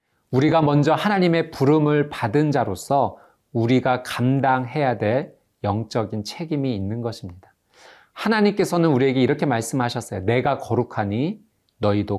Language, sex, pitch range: Korean, male, 110-150 Hz